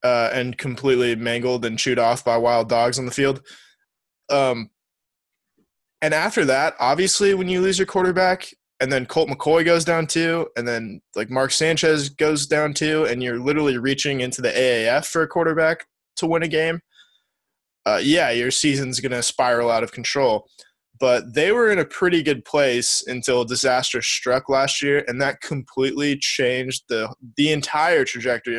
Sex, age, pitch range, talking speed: male, 20-39, 120-150 Hz, 175 wpm